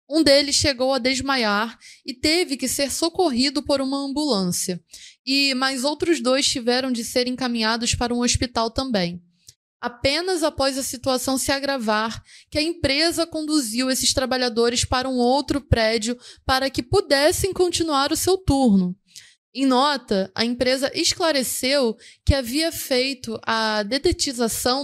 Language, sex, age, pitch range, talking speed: Portuguese, female, 20-39, 230-280 Hz, 140 wpm